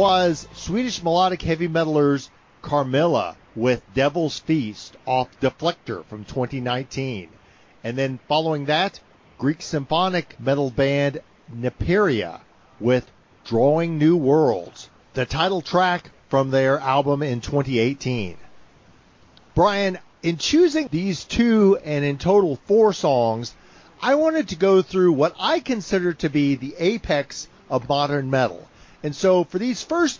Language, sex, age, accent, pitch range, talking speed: English, male, 50-69, American, 135-190 Hz, 125 wpm